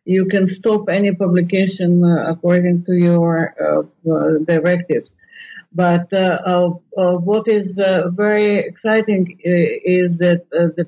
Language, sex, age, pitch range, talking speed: English, female, 50-69, 175-210 Hz, 145 wpm